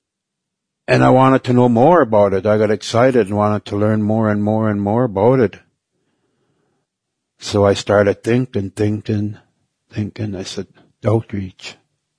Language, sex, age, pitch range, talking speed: English, male, 60-79, 105-115 Hz, 155 wpm